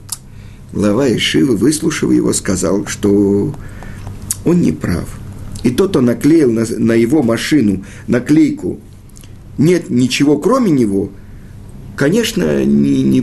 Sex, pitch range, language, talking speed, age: male, 100-145 Hz, Russian, 100 wpm, 50-69